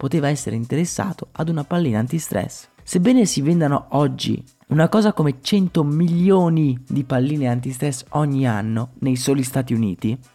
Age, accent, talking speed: 30-49, native, 145 wpm